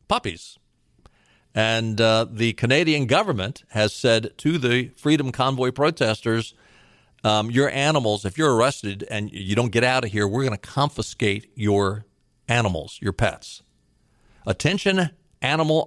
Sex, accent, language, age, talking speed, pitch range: male, American, English, 50-69, 135 wpm, 115-150 Hz